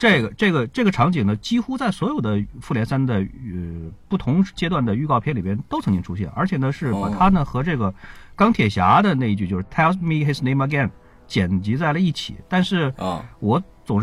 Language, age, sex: Chinese, 50-69, male